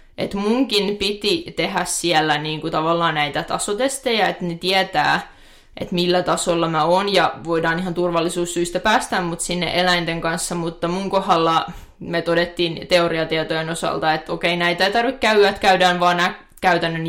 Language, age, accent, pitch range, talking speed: Finnish, 20-39, native, 165-185 Hz, 155 wpm